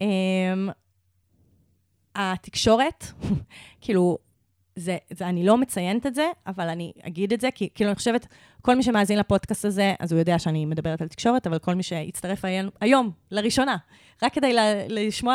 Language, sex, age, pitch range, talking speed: Hebrew, female, 20-39, 170-225 Hz, 160 wpm